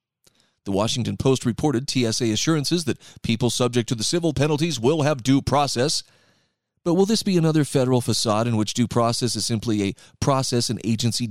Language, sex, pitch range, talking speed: English, male, 115-155 Hz, 180 wpm